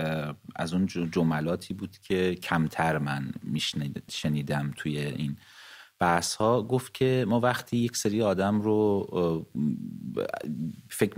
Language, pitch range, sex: English, 85-110 Hz, male